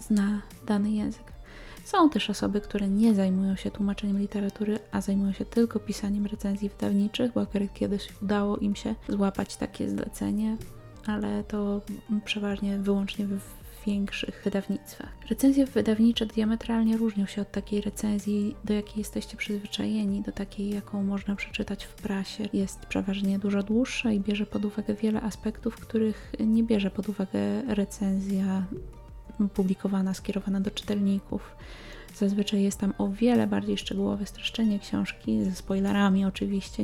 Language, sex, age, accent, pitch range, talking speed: Polish, female, 20-39, native, 195-215 Hz, 140 wpm